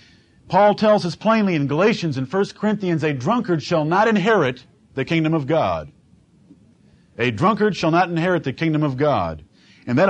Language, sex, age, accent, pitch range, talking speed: English, male, 50-69, American, 125-180 Hz, 170 wpm